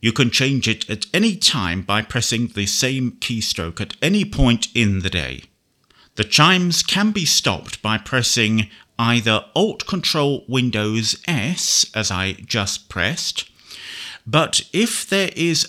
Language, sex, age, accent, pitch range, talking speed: English, male, 50-69, British, 105-130 Hz, 135 wpm